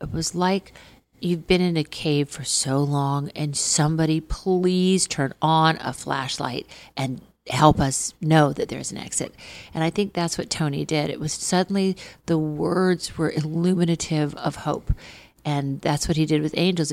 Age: 50-69